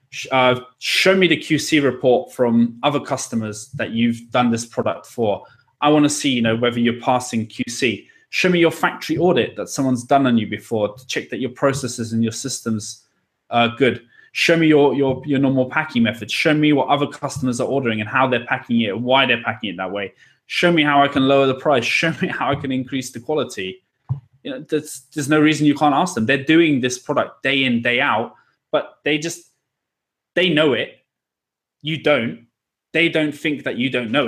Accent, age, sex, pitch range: British, 20-39, male, 120-145 Hz